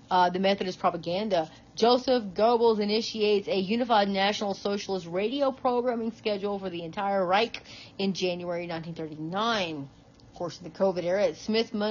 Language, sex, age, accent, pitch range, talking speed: English, female, 40-59, American, 185-220 Hz, 140 wpm